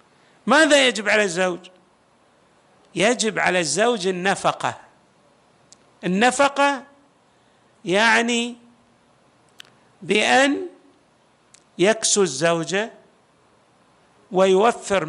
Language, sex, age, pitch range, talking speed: Arabic, male, 50-69, 175-240 Hz, 55 wpm